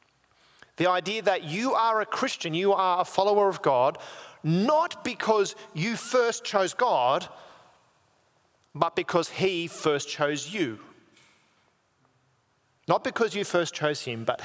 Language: English